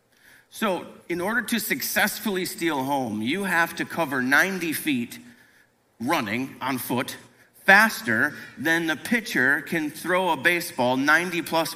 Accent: American